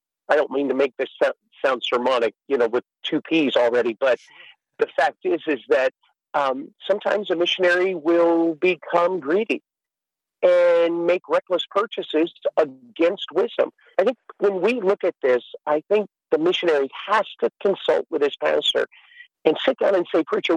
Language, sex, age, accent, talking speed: English, male, 50-69, American, 165 wpm